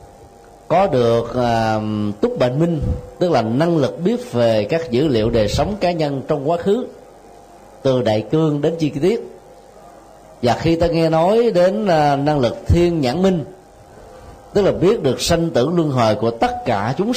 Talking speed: 180 wpm